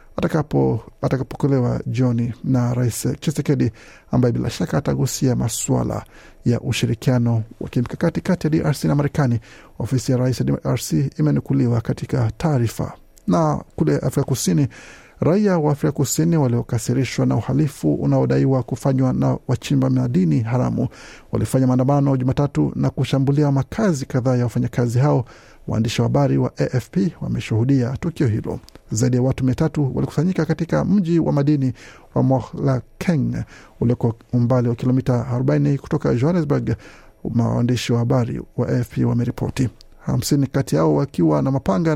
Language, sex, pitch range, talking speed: Swahili, male, 120-145 Hz, 135 wpm